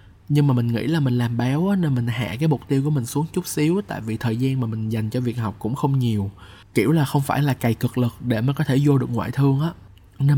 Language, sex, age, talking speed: Vietnamese, male, 20-39, 300 wpm